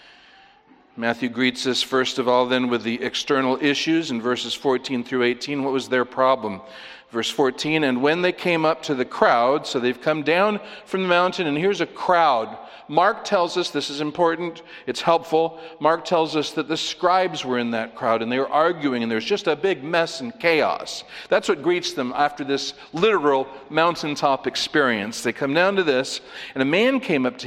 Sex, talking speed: male, 200 wpm